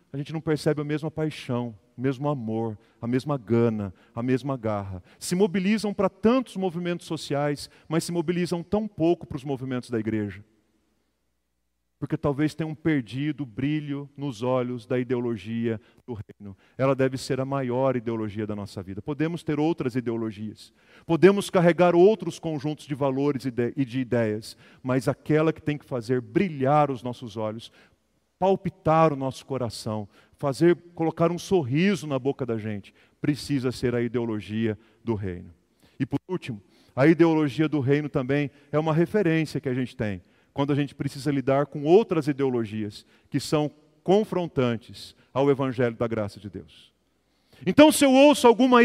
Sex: male